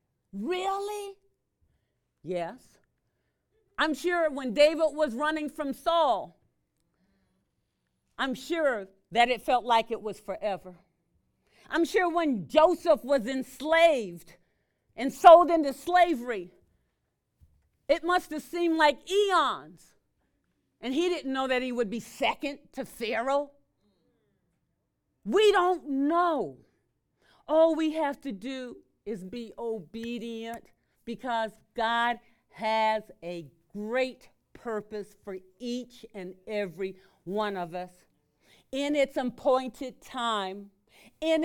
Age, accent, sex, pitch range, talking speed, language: 40-59, American, female, 200-295 Hz, 110 wpm, English